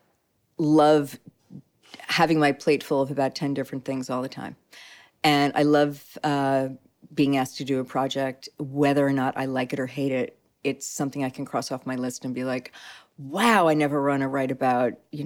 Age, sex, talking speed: 40-59, female, 200 wpm